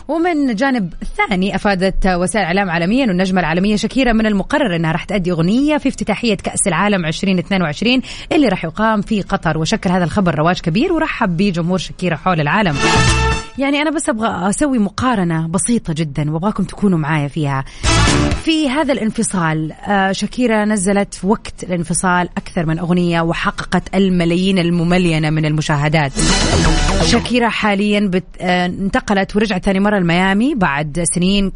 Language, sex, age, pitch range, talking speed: Arabic, female, 30-49, 170-210 Hz, 140 wpm